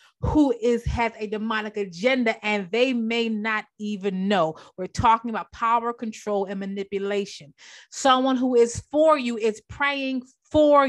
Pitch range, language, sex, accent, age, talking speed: 185-240 Hz, English, female, American, 30-49, 150 wpm